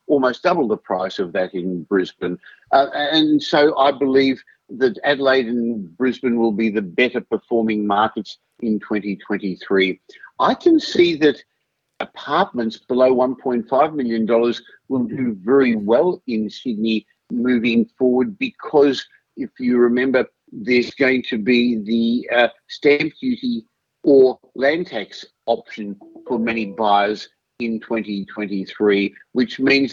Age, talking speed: 50-69, 130 wpm